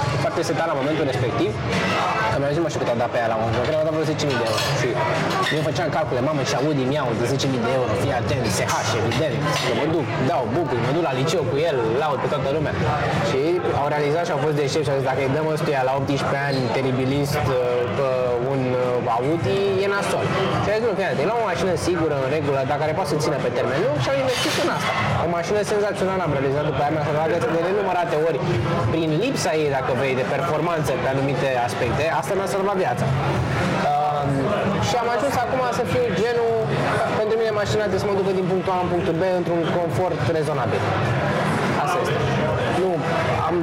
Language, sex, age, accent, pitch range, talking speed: Romanian, male, 20-39, native, 135-175 Hz, 200 wpm